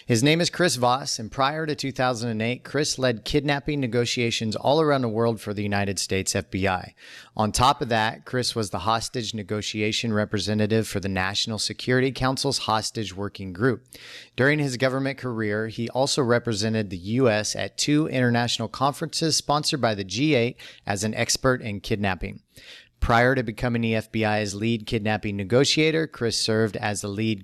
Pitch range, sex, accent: 105-130 Hz, male, American